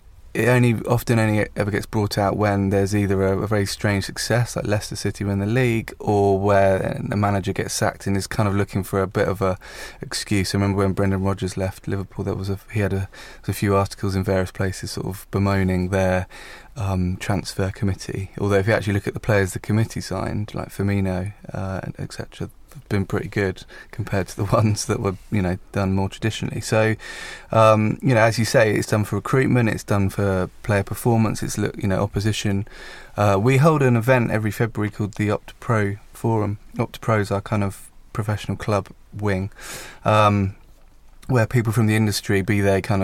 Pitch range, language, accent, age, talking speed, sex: 95-110 Hz, English, British, 20-39, 200 wpm, male